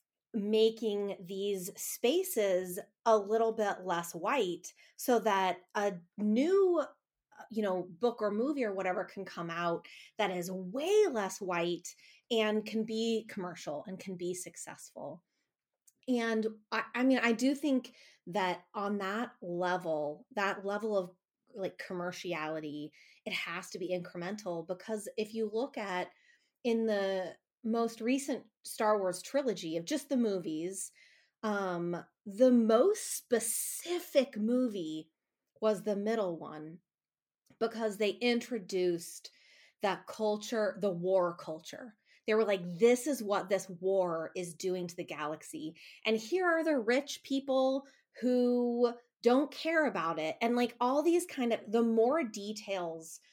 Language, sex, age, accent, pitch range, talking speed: English, female, 30-49, American, 185-240 Hz, 135 wpm